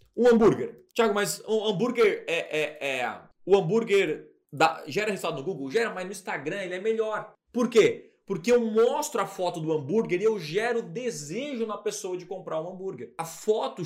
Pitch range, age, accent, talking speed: 165-230 Hz, 20-39, Brazilian, 200 wpm